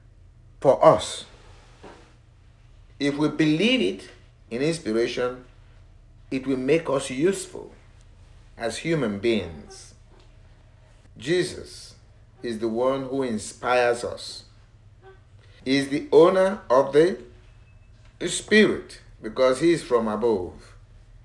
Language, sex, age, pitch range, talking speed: English, male, 50-69, 100-125 Hz, 100 wpm